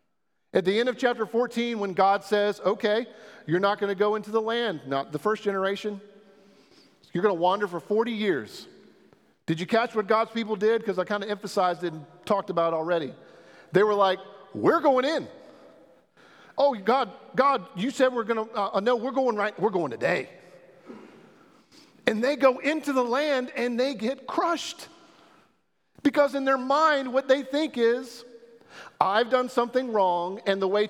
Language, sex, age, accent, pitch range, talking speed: English, male, 40-59, American, 180-240 Hz, 185 wpm